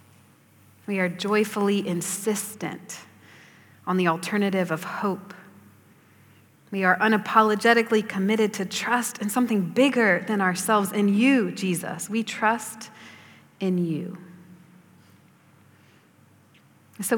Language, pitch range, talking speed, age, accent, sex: English, 185-220 Hz, 100 wpm, 40-59, American, female